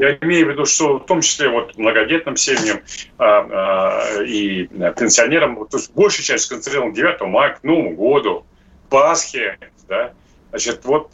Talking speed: 160 wpm